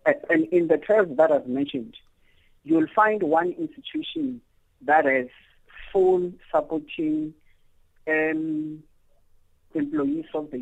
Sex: male